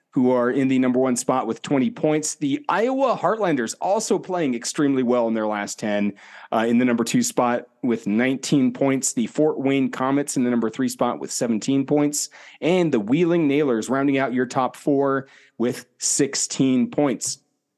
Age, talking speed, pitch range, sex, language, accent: 30-49, 180 wpm, 125-155 Hz, male, English, American